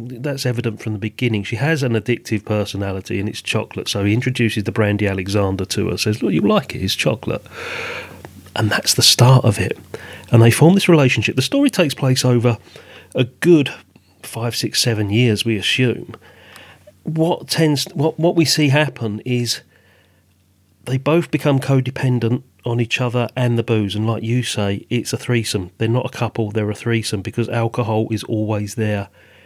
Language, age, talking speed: English, 40-59, 185 wpm